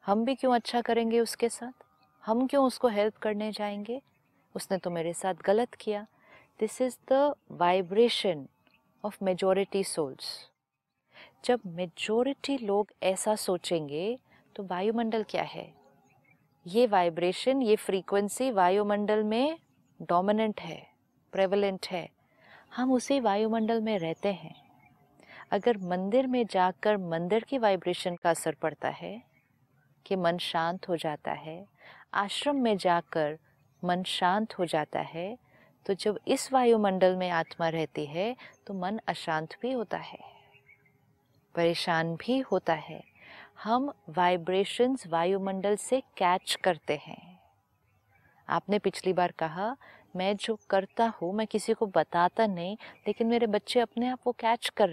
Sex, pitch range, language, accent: female, 175-230 Hz, Hindi, native